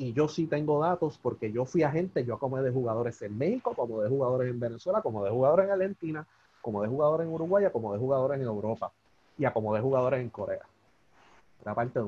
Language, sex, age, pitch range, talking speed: Spanish, male, 30-49, 115-170 Hz, 215 wpm